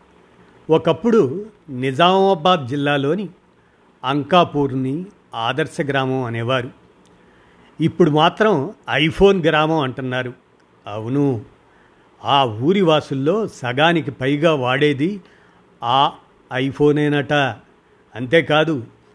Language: Telugu